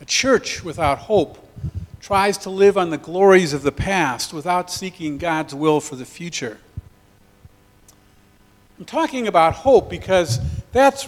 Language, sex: English, male